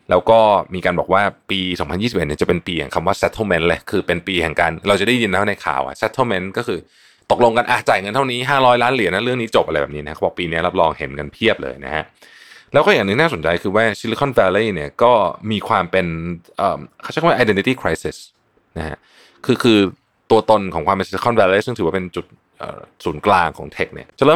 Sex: male